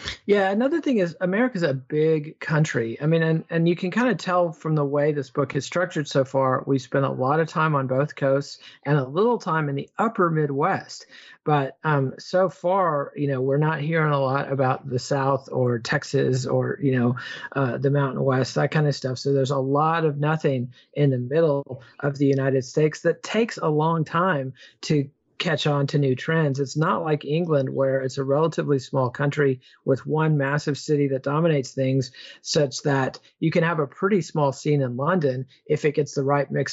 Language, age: English, 40-59